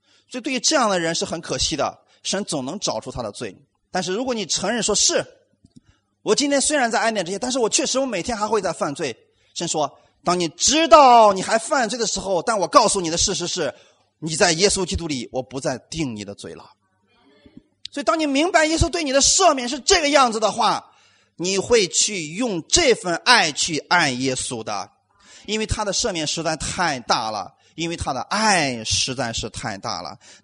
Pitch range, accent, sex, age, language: 150-235 Hz, native, male, 30-49, Chinese